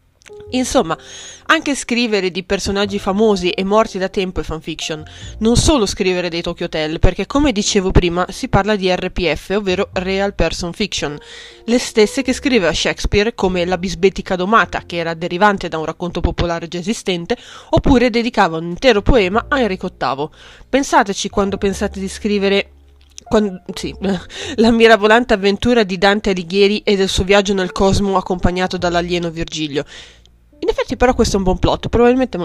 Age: 20-39